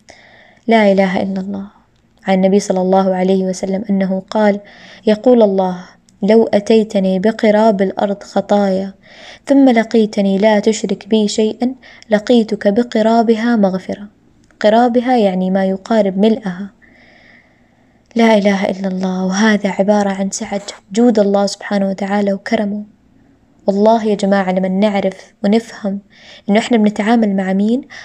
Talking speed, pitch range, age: 120 wpm, 195-220 Hz, 20-39